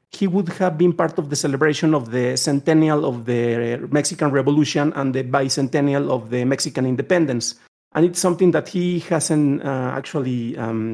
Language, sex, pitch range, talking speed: English, male, 135-175 Hz, 170 wpm